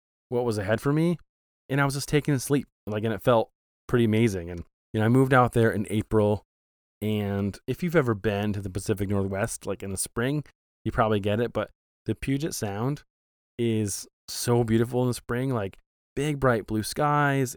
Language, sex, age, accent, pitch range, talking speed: English, male, 20-39, American, 100-120 Hz, 200 wpm